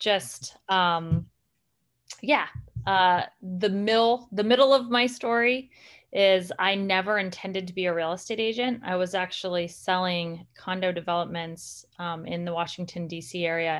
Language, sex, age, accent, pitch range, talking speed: English, female, 30-49, American, 170-195 Hz, 145 wpm